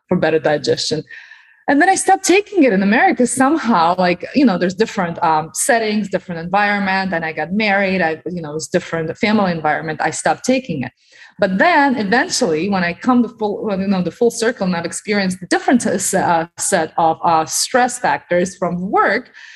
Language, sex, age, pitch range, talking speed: English, female, 30-49, 175-245 Hz, 200 wpm